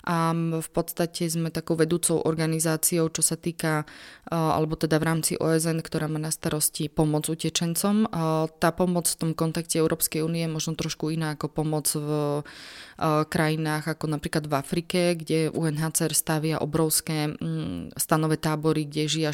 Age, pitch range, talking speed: 20-39, 155-165 Hz, 145 wpm